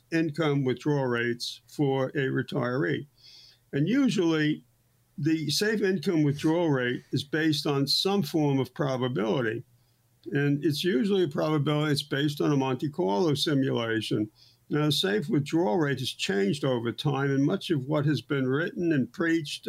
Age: 60-79